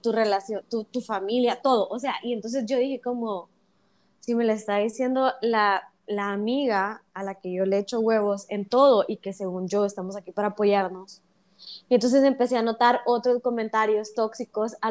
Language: Spanish